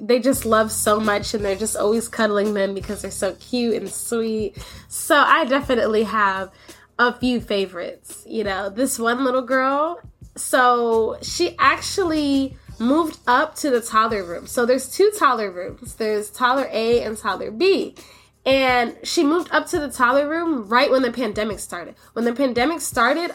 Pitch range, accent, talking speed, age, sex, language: 225-295 Hz, American, 170 wpm, 10-29, female, English